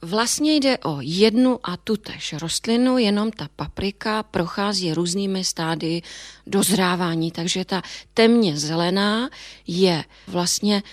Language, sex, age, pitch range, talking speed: Czech, female, 30-49, 175-215 Hz, 110 wpm